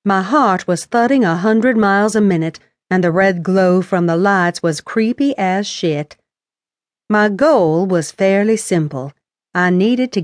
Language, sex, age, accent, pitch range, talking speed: English, female, 50-69, American, 165-210 Hz, 165 wpm